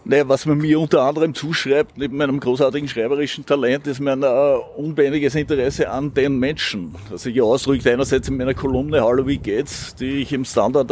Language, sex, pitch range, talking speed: German, male, 115-135 Hz, 185 wpm